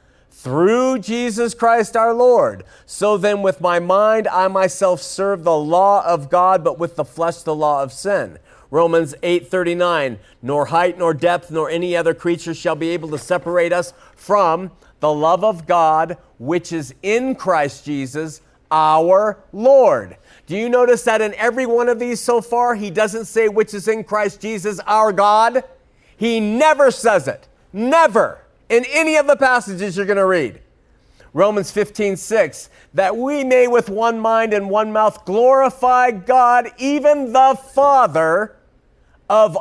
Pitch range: 175-230 Hz